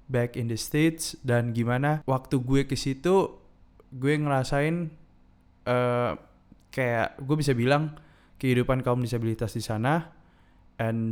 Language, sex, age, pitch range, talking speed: Indonesian, male, 20-39, 115-150 Hz, 125 wpm